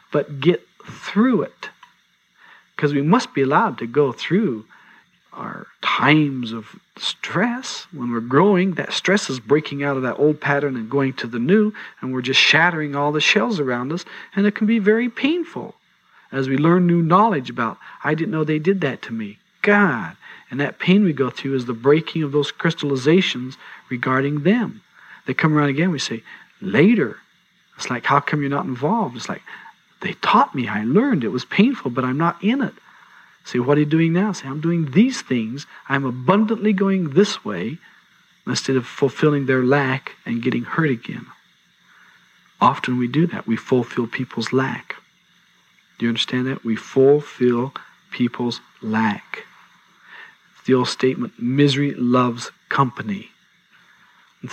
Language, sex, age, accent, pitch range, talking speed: English, male, 50-69, American, 130-175 Hz, 170 wpm